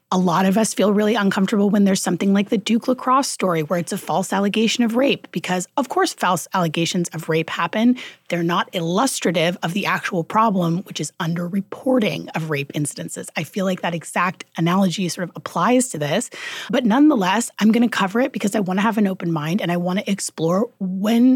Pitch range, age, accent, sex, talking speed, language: 170-225 Hz, 30-49, American, female, 210 wpm, English